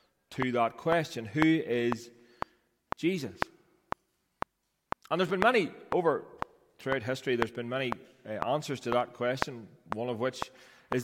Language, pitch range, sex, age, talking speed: English, 130-160 Hz, male, 30-49, 135 wpm